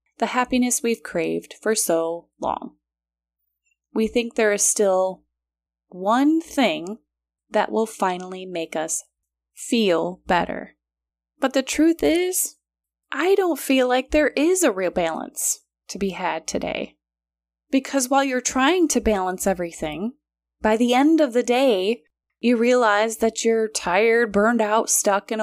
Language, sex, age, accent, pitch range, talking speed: English, female, 20-39, American, 165-260 Hz, 140 wpm